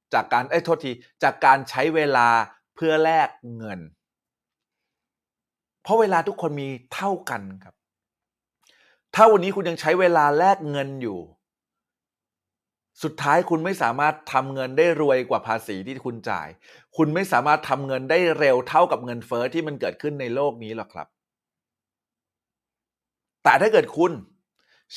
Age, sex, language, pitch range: 30-49, male, Thai, 115-165 Hz